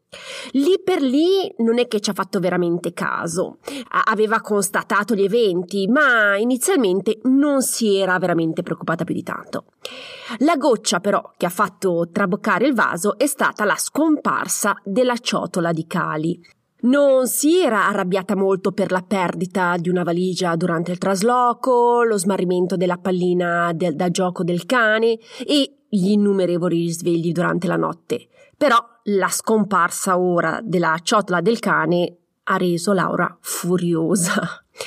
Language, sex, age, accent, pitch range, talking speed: Italian, female, 30-49, native, 185-245 Hz, 145 wpm